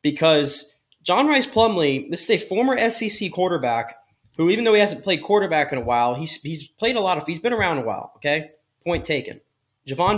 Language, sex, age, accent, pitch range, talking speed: English, male, 20-39, American, 135-180 Hz, 205 wpm